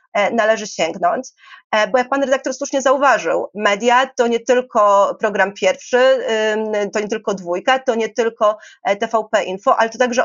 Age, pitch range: 30-49, 215-255 Hz